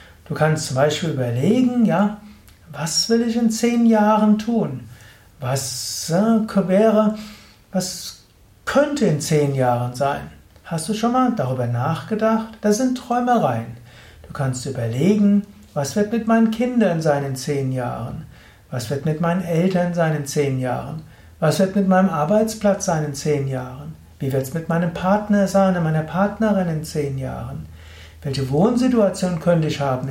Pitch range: 135-205 Hz